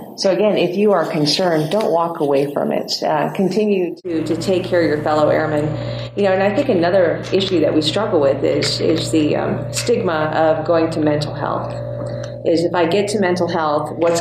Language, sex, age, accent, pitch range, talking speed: English, female, 40-59, American, 150-180 Hz, 210 wpm